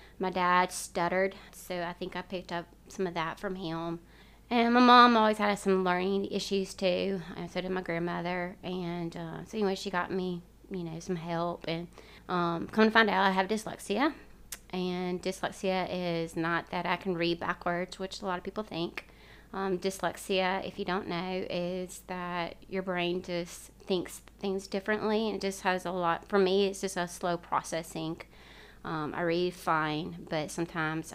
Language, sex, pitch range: English, female, 170-195 Hz